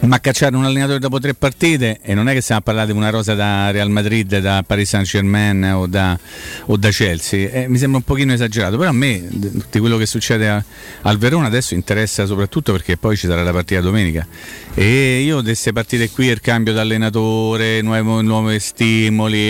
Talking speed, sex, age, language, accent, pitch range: 205 wpm, male, 40-59, Italian, native, 100-115 Hz